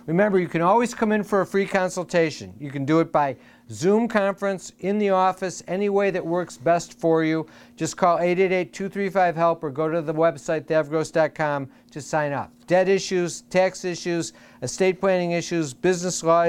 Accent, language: American, English